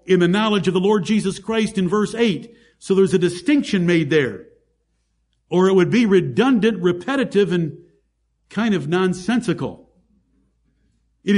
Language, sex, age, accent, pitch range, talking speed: English, male, 60-79, American, 175-210 Hz, 150 wpm